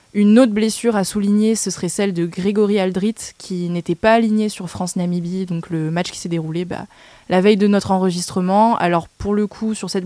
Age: 20-39